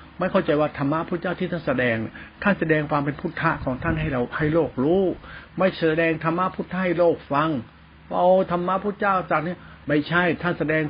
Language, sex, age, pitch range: Thai, male, 60-79, 140-175 Hz